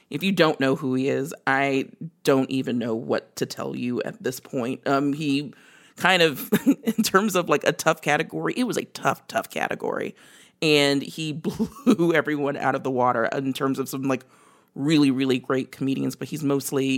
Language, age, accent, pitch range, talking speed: English, 40-59, American, 135-165 Hz, 195 wpm